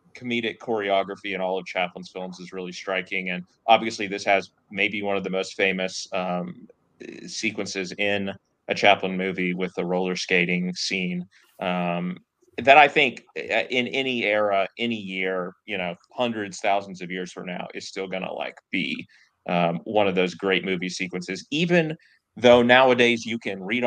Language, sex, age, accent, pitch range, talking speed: English, male, 30-49, American, 90-105 Hz, 170 wpm